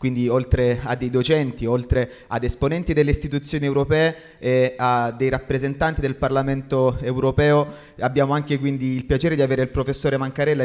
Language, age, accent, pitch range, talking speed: Italian, 30-49, native, 130-150 Hz, 165 wpm